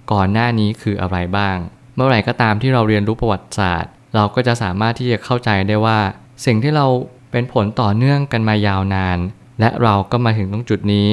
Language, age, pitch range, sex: Thai, 20-39, 100-125 Hz, male